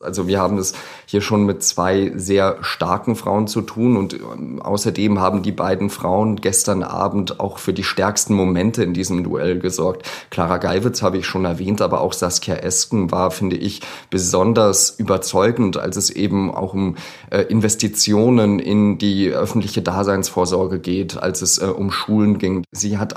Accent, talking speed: German, 170 wpm